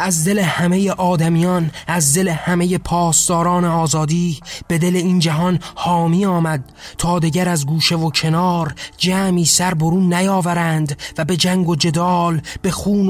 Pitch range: 165-185 Hz